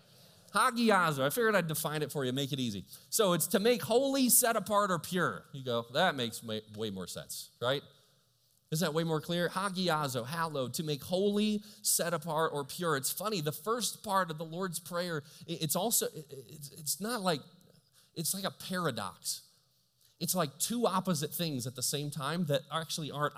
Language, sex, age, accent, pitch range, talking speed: English, male, 30-49, American, 150-190 Hz, 185 wpm